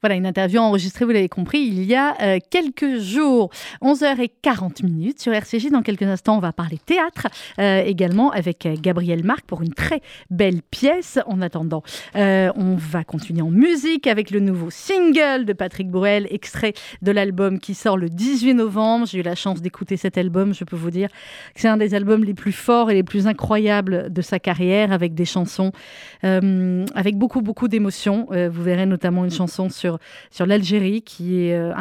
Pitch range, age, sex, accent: 185-235 Hz, 30-49, female, French